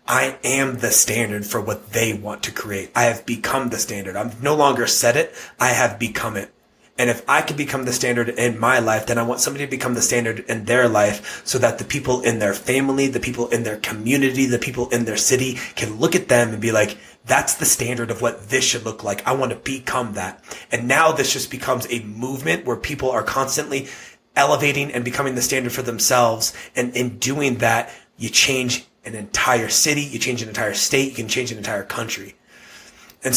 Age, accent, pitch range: 30-49, American, 115-130 Hz